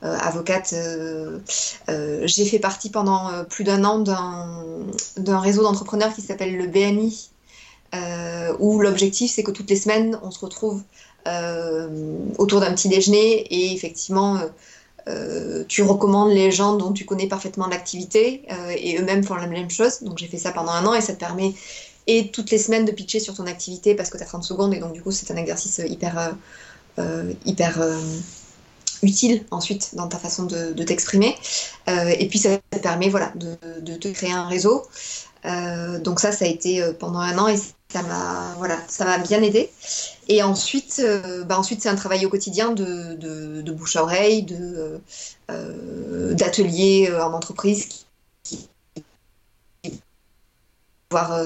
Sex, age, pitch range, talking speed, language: female, 20-39, 170-205 Hz, 175 wpm, French